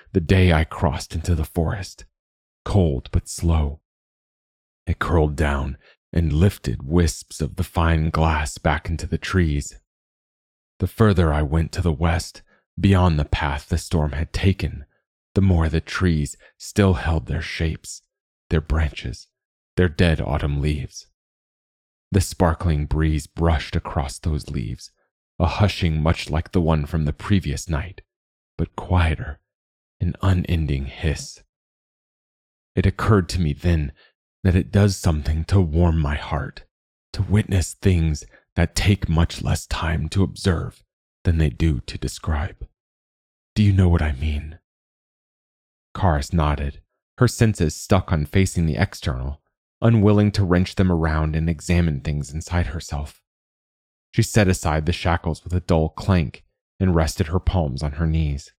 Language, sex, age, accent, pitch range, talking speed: English, male, 30-49, American, 75-90 Hz, 145 wpm